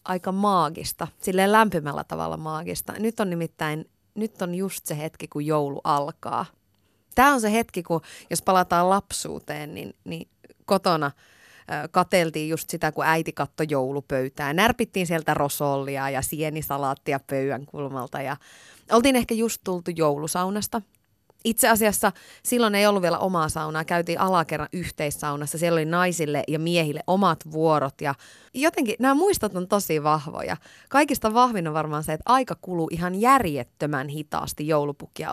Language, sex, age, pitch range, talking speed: Finnish, female, 30-49, 150-205 Hz, 145 wpm